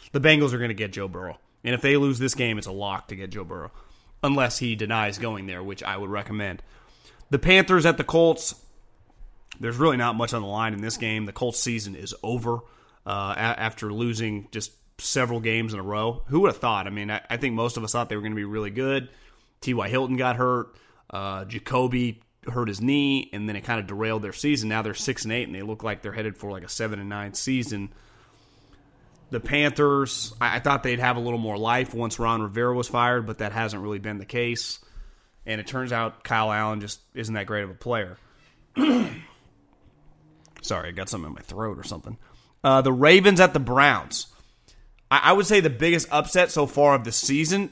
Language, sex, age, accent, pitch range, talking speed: English, male, 30-49, American, 105-135 Hz, 220 wpm